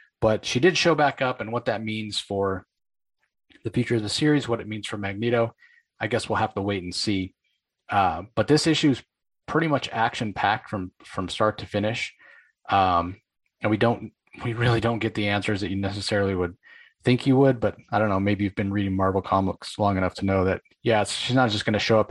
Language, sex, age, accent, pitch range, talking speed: English, male, 30-49, American, 100-125 Hz, 225 wpm